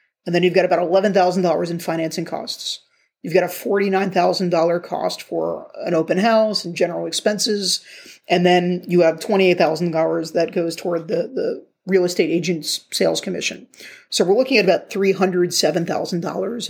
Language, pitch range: English, 175-195 Hz